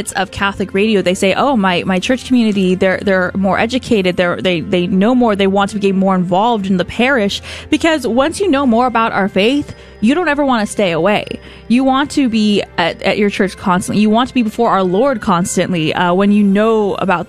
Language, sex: English, female